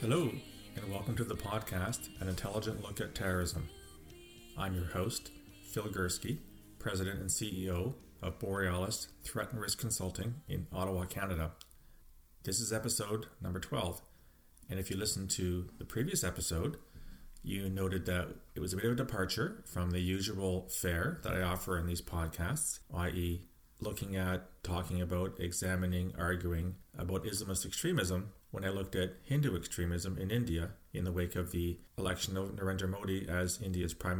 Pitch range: 85-105 Hz